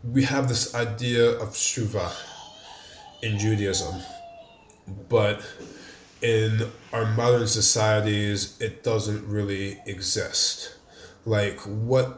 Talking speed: 95 wpm